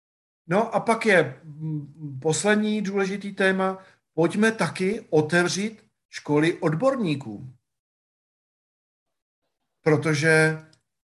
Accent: native